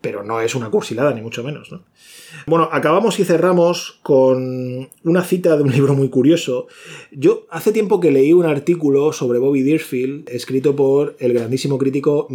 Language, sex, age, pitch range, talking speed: Spanish, male, 20-39, 130-165 Hz, 175 wpm